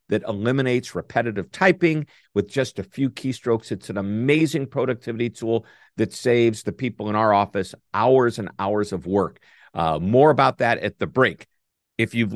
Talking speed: 170 wpm